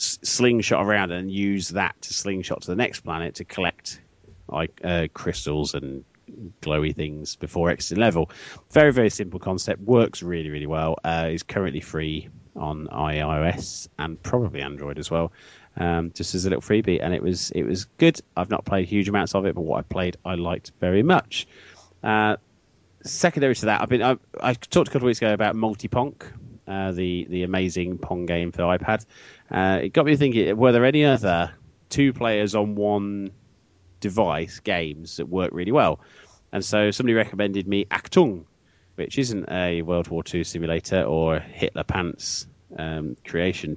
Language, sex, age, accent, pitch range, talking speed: English, male, 30-49, British, 85-110 Hz, 180 wpm